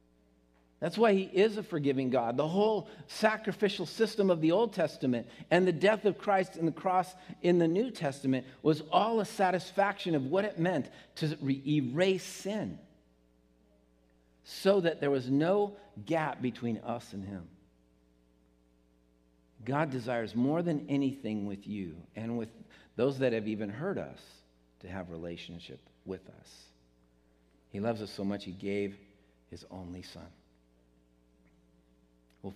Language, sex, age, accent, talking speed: English, male, 50-69, American, 145 wpm